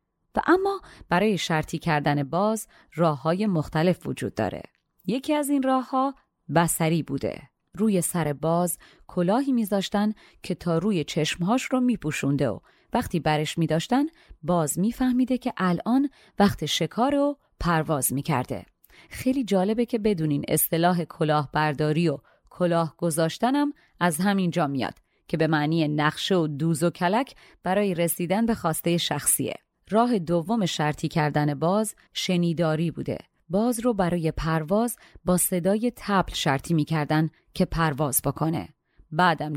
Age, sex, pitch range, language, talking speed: 30-49, female, 155-210 Hz, Persian, 135 wpm